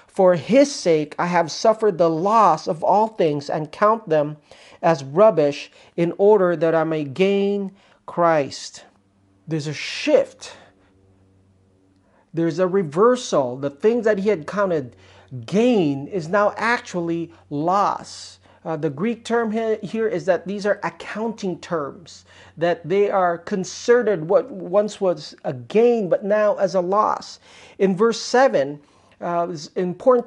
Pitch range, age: 160-220 Hz, 40-59